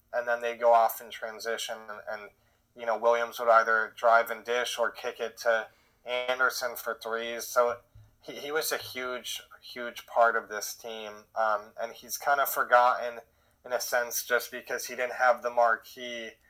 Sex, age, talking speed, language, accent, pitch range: male, 20-39, 185 wpm, English, American, 115-125 Hz